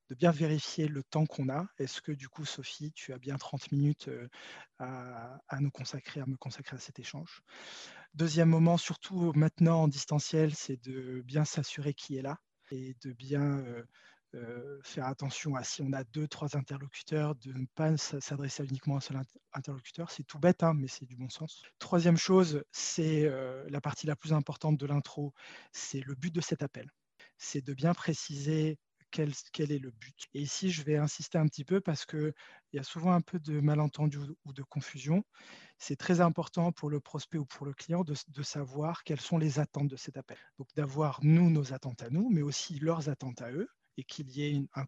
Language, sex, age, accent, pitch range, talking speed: French, male, 20-39, French, 140-160 Hz, 205 wpm